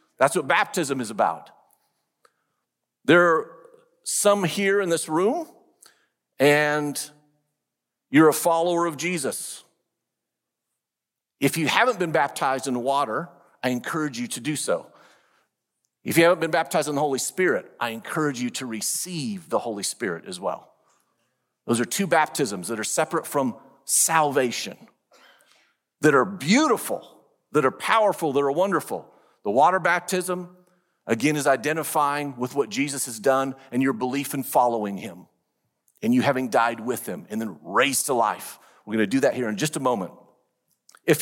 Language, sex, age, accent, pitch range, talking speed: English, male, 50-69, American, 135-180 Hz, 155 wpm